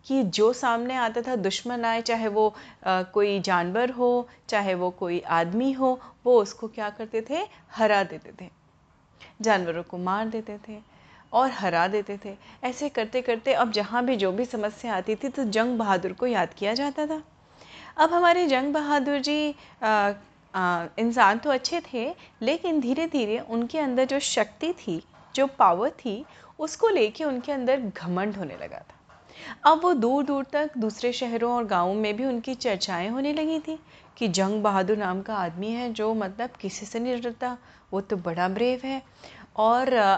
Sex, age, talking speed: female, 30-49, 170 wpm